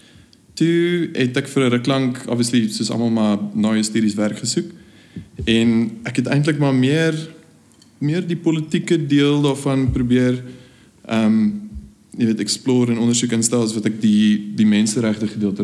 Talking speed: 150 wpm